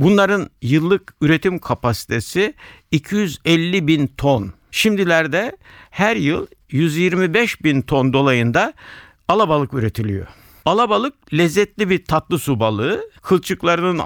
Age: 60-79